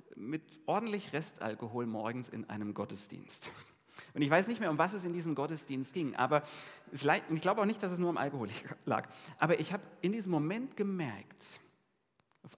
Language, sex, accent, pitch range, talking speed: German, male, German, 125-165 Hz, 180 wpm